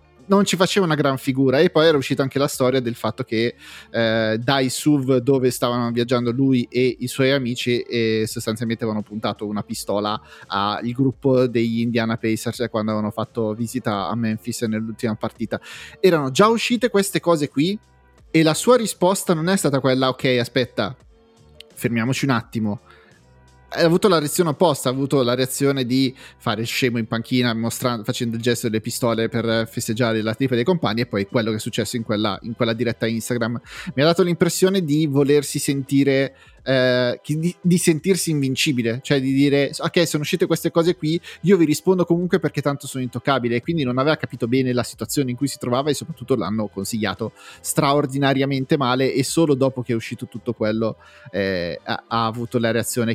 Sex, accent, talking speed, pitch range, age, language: male, native, 185 wpm, 115-140 Hz, 30-49, Italian